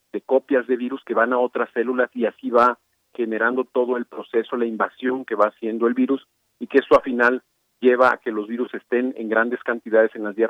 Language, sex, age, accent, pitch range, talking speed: Spanish, male, 40-59, Mexican, 110-125 Hz, 230 wpm